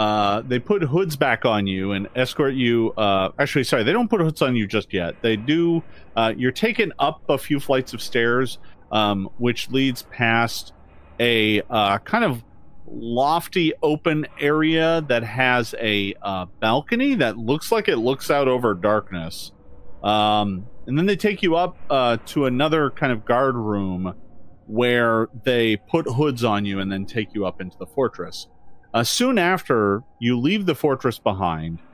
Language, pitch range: English, 100-140 Hz